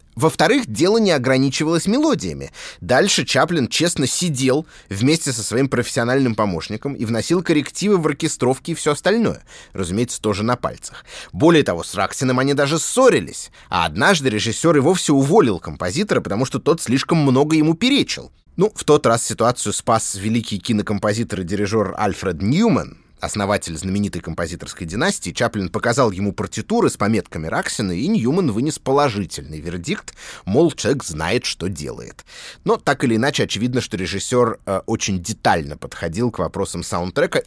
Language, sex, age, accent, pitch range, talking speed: Russian, male, 20-39, native, 105-150 Hz, 150 wpm